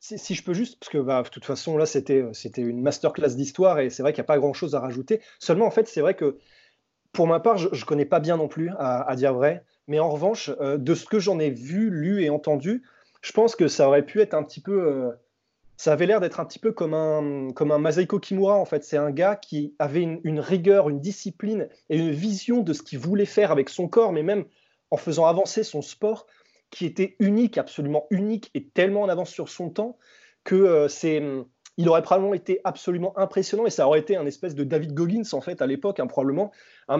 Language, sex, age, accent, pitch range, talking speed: French, male, 20-39, French, 145-195 Hz, 240 wpm